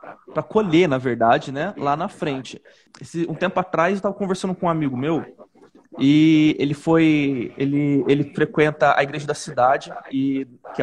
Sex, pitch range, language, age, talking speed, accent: male, 140-185 Hz, Portuguese, 20-39, 170 wpm, Brazilian